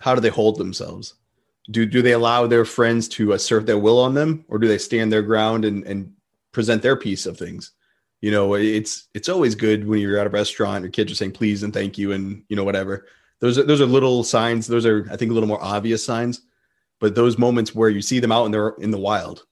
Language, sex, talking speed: English, male, 250 wpm